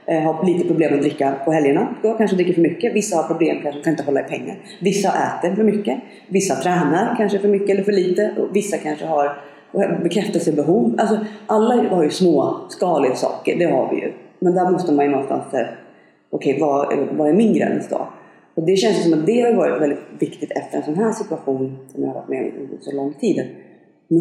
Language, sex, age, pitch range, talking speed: Swedish, female, 40-59, 145-205 Hz, 225 wpm